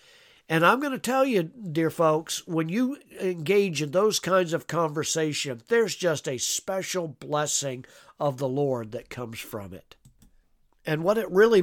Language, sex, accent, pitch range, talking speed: English, male, American, 140-170 Hz, 165 wpm